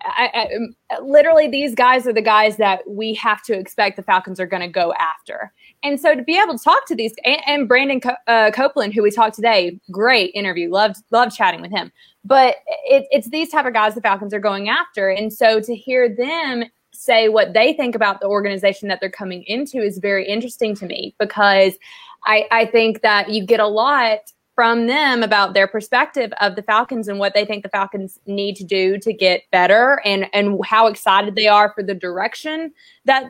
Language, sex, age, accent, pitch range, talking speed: English, female, 20-39, American, 205-265 Hz, 215 wpm